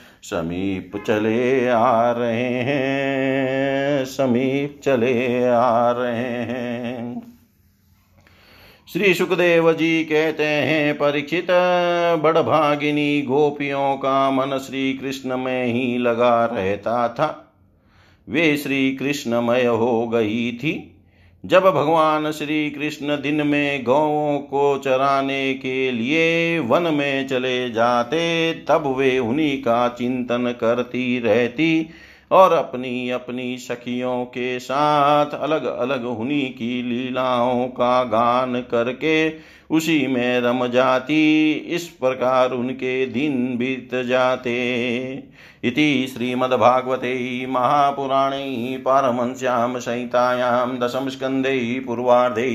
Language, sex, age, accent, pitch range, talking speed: Hindi, male, 50-69, native, 120-145 Hz, 100 wpm